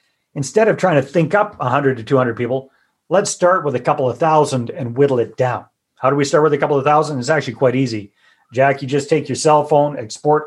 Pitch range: 125-150 Hz